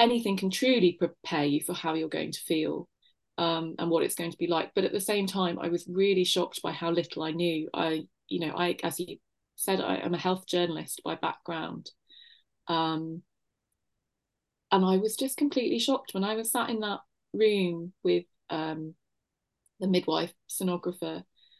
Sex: female